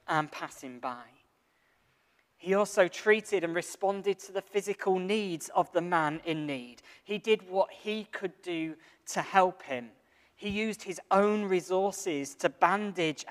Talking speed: 150 wpm